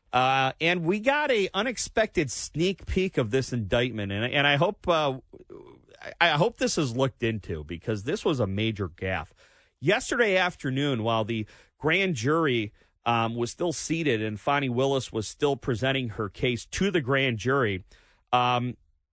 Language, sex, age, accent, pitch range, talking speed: English, male, 30-49, American, 105-145 Hz, 160 wpm